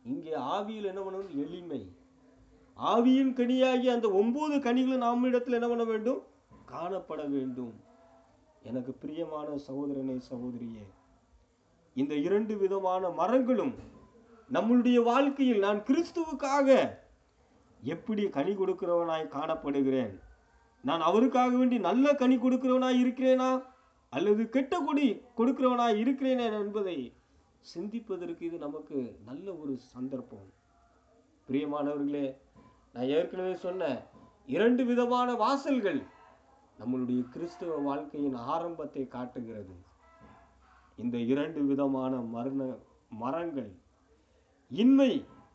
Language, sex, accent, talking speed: Tamil, male, native, 90 wpm